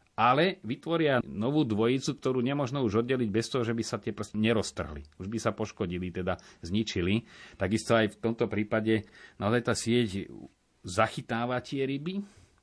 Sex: male